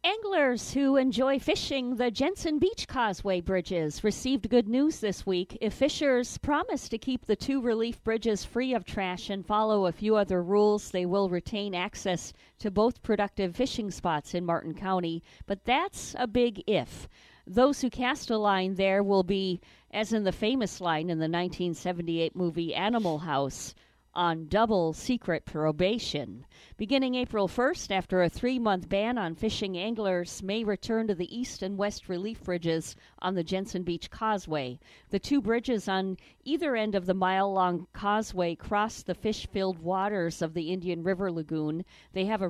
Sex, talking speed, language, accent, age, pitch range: female, 165 wpm, English, American, 40-59, 175-225 Hz